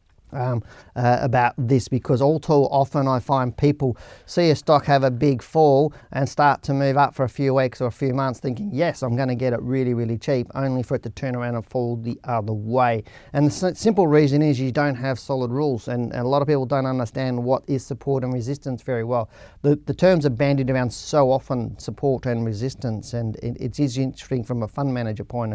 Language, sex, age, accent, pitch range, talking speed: English, male, 40-59, Australian, 115-135 Hz, 230 wpm